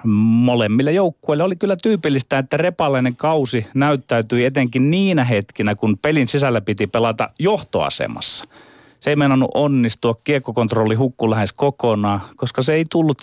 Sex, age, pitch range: male, 30-49, 115-150 Hz